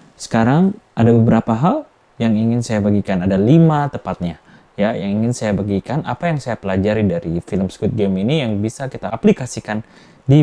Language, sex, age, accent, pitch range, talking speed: Indonesian, male, 20-39, native, 100-125 Hz, 175 wpm